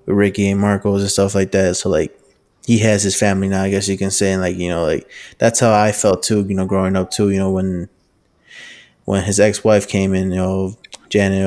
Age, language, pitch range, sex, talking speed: 20-39, English, 95-105 Hz, male, 235 wpm